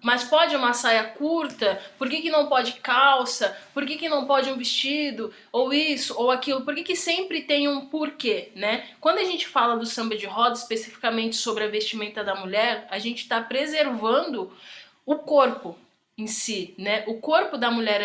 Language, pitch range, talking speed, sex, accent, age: Portuguese, 220-270 Hz, 190 wpm, female, Brazilian, 20-39